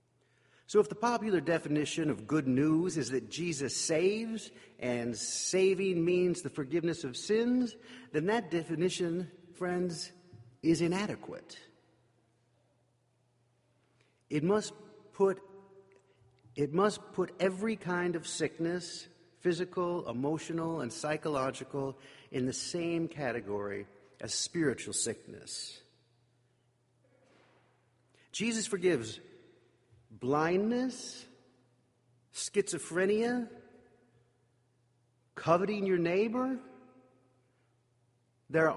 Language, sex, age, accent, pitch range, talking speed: English, male, 50-69, American, 125-195 Hz, 80 wpm